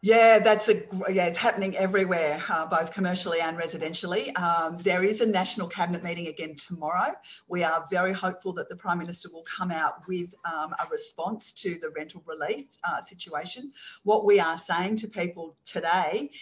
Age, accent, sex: 50-69, Australian, female